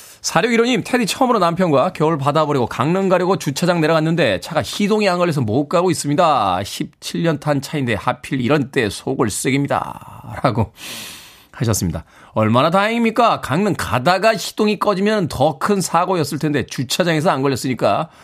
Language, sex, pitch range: Korean, male, 125-185 Hz